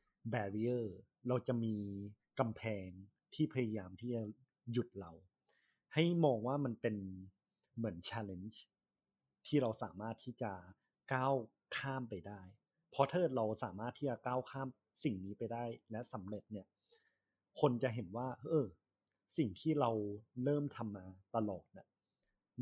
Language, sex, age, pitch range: Thai, male, 30-49, 105-130 Hz